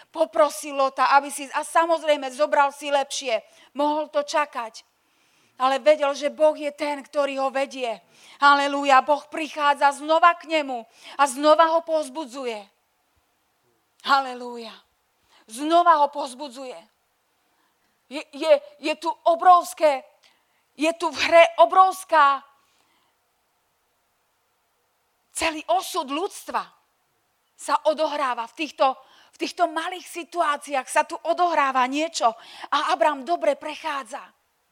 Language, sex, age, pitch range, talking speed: Slovak, female, 40-59, 280-330 Hz, 110 wpm